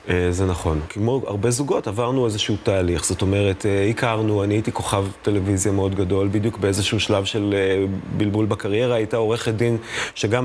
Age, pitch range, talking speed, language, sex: 30-49, 95-115 Hz, 155 wpm, Hebrew, male